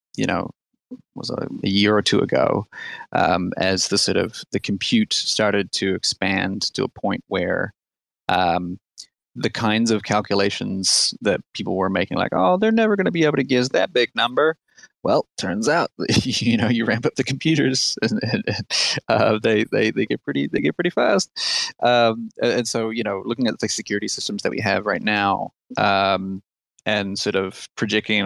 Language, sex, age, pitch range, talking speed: English, male, 30-49, 95-125 Hz, 185 wpm